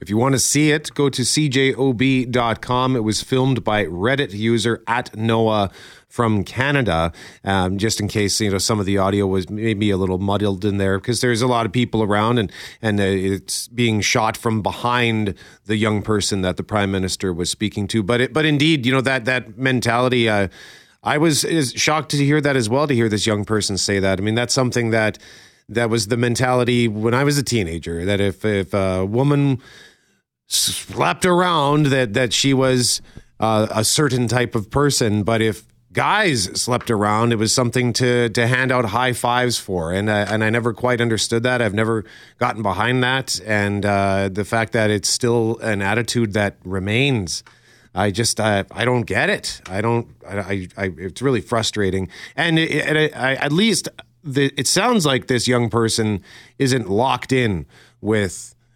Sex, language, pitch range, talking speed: male, English, 105-125 Hz, 190 wpm